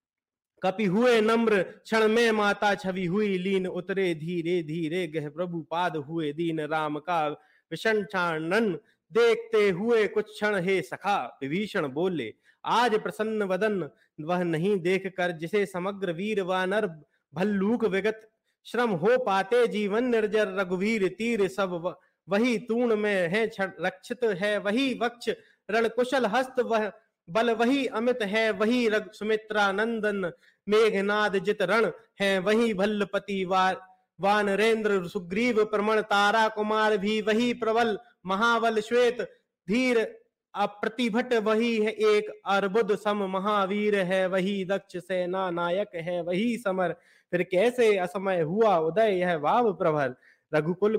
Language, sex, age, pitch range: Hindi, male, 30-49, 185-225 Hz